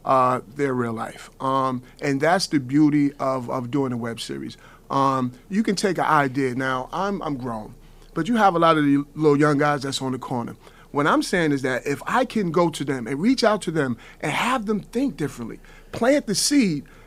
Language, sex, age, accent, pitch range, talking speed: English, male, 30-49, American, 140-215 Hz, 220 wpm